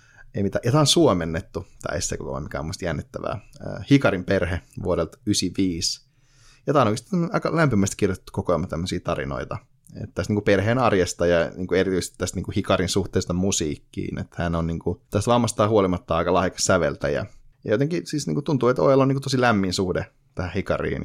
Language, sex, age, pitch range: Finnish, male, 30-49, 90-110 Hz